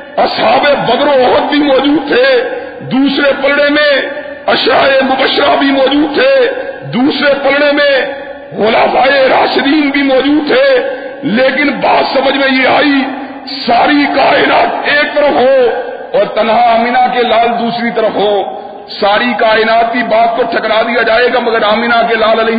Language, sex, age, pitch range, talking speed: Urdu, male, 50-69, 235-290 Hz, 140 wpm